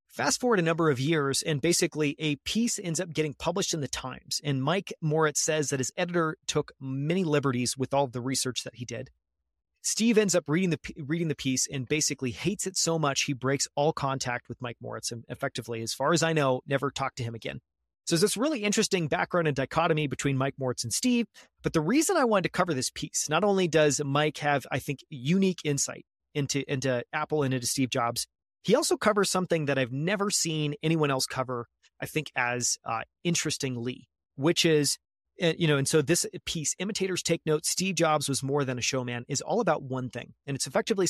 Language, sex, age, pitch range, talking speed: English, male, 30-49, 130-170 Hz, 215 wpm